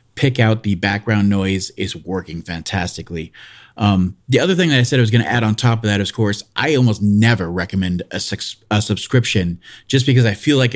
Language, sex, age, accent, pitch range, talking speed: English, male, 30-49, American, 100-120 Hz, 220 wpm